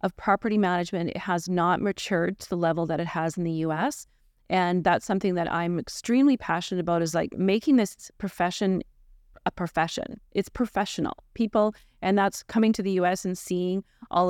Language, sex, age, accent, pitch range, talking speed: English, female, 30-49, American, 170-205 Hz, 180 wpm